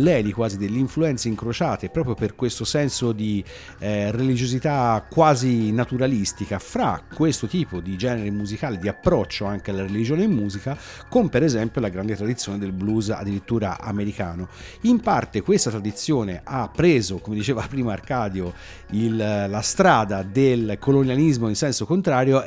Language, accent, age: Italian, native, 50-69